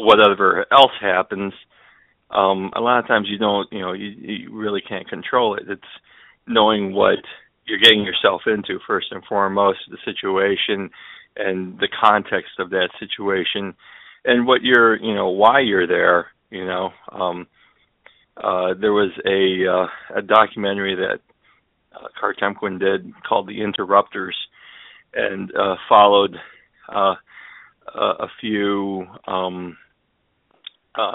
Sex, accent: male, American